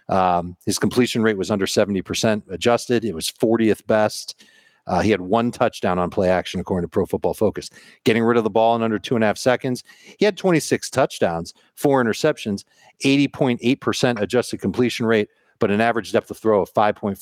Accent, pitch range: American, 105-135 Hz